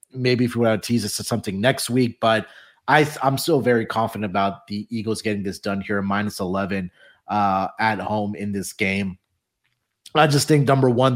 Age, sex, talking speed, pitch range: 30-49, male, 200 wpm, 105-125 Hz